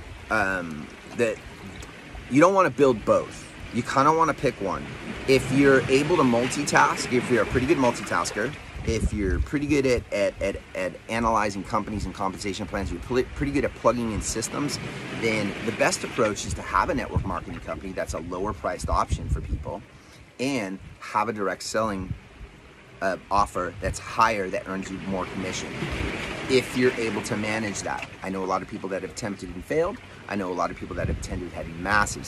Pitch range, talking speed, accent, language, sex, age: 95-120 Hz, 195 wpm, American, English, male, 30-49